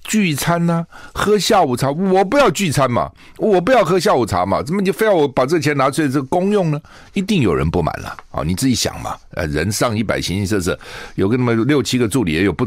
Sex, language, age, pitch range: male, Chinese, 60-79, 100-165 Hz